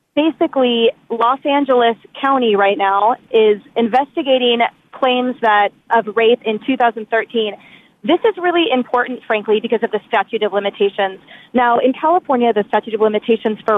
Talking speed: 145 wpm